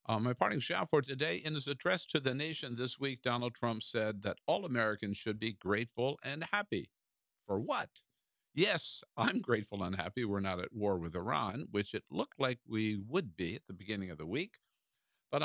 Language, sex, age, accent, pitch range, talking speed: English, male, 50-69, American, 105-135 Hz, 200 wpm